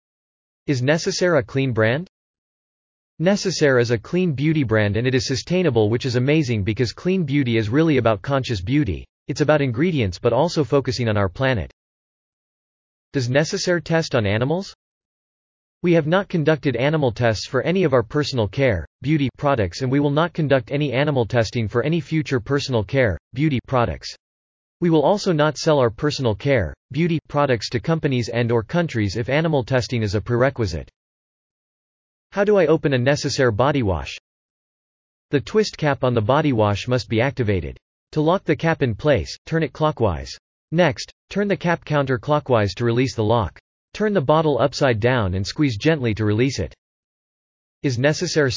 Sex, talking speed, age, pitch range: male, 170 wpm, 30-49, 115-155 Hz